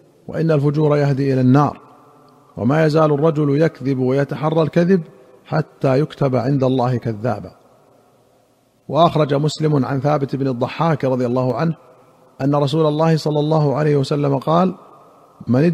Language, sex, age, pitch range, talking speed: Arabic, male, 50-69, 140-155 Hz, 130 wpm